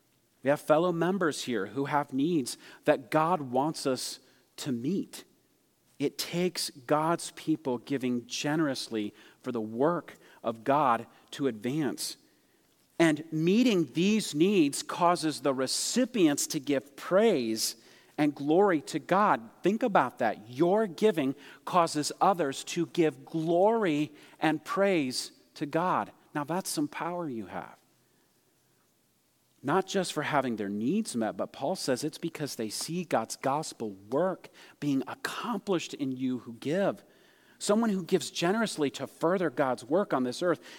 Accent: American